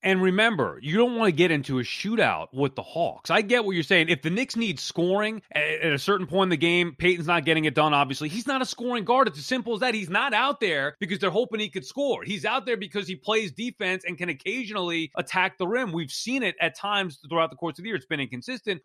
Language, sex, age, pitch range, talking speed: English, male, 30-49, 150-200 Hz, 265 wpm